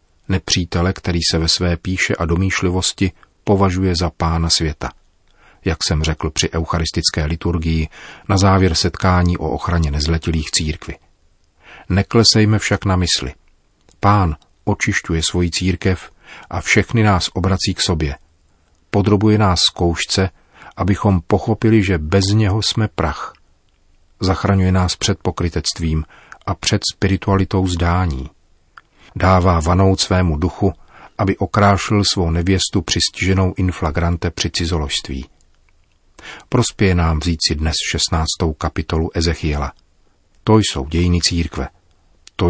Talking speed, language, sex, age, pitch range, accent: 115 wpm, Czech, male, 40-59, 80-95 Hz, native